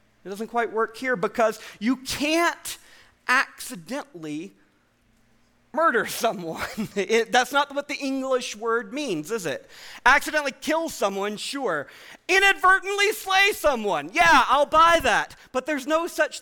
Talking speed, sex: 130 wpm, male